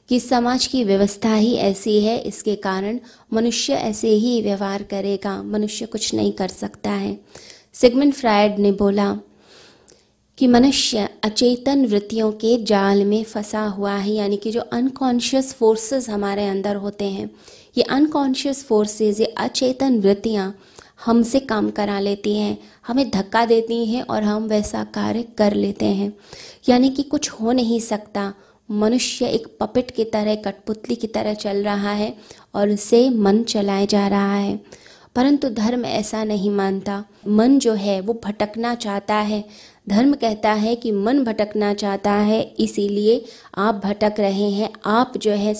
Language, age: Hindi, 20-39